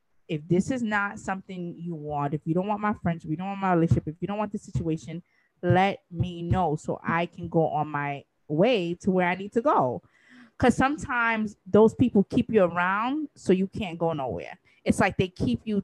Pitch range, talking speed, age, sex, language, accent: 170-225 Hz, 215 wpm, 20-39, female, English, American